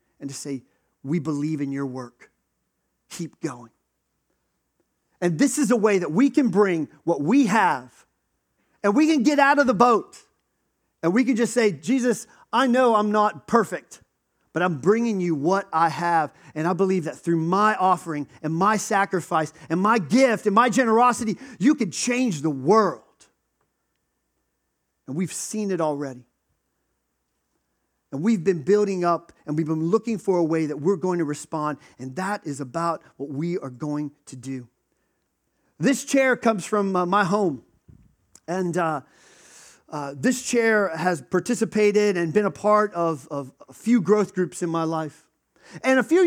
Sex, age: male, 40-59